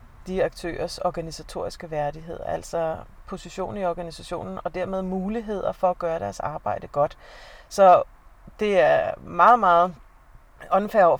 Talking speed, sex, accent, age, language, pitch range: 125 wpm, female, native, 30-49, Danish, 170-200 Hz